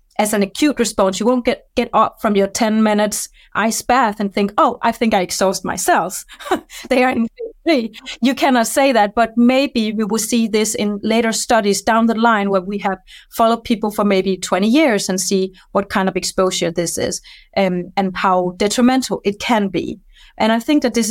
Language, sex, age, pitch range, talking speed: English, female, 30-49, 190-230 Hz, 200 wpm